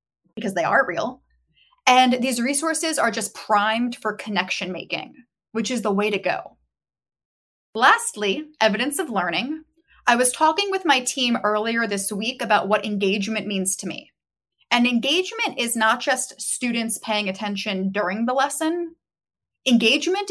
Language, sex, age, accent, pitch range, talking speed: English, female, 20-39, American, 205-270 Hz, 150 wpm